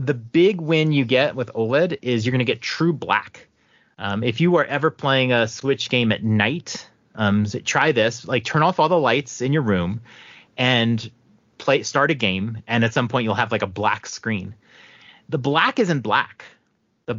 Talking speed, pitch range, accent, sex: 200 wpm, 110-140 Hz, American, male